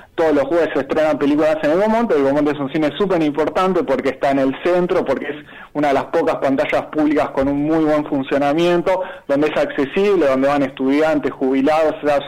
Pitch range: 140-185 Hz